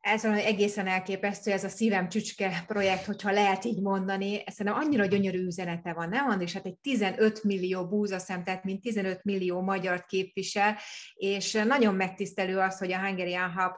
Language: Hungarian